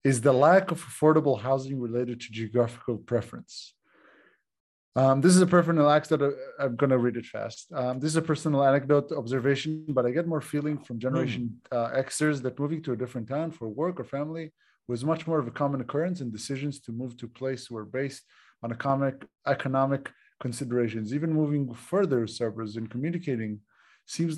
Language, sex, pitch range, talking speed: Hebrew, male, 120-145 Hz, 185 wpm